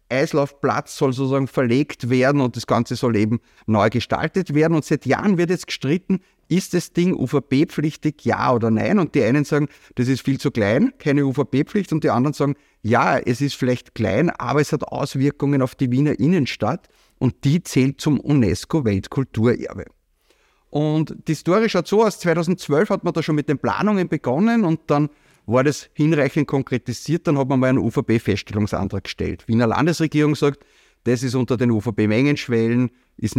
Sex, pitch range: male, 115-155 Hz